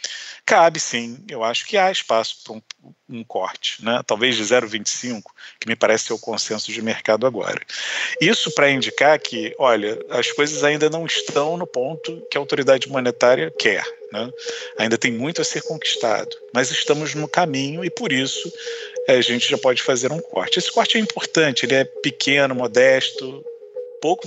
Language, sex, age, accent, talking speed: Portuguese, male, 40-59, Brazilian, 175 wpm